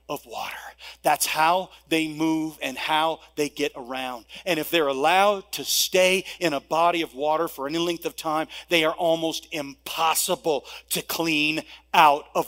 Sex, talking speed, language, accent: male, 170 wpm, English, American